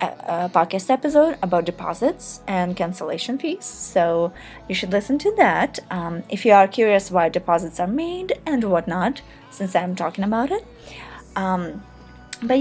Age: 20-39